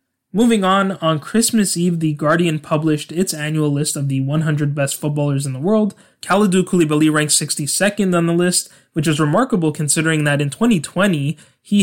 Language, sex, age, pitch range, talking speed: English, male, 20-39, 145-175 Hz, 175 wpm